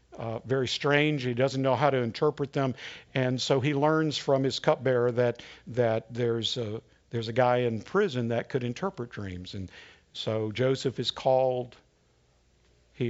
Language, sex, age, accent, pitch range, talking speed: English, male, 50-69, American, 110-140 Hz, 165 wpm